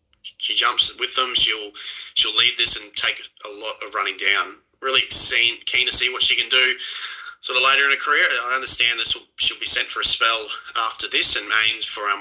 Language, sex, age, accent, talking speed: English, male, 30-49, Australian, 225 wpm